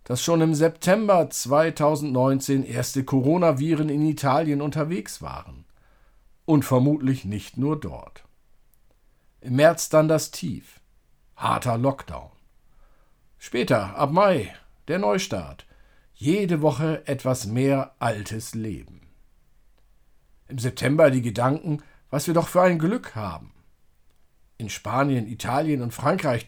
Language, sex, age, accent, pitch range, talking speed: German, male, 50-69, German, 115-155 Hz, 115 wpm